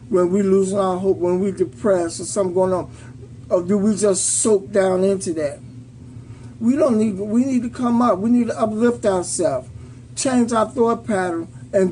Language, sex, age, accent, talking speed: English, male, 50-69, American, 190 wpm